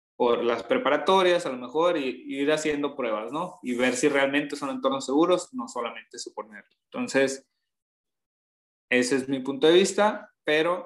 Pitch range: 125-155 Hz